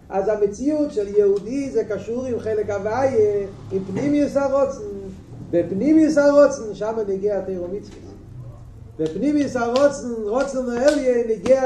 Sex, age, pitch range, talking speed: male, 50-69, 190-250 Hz, 140 wpm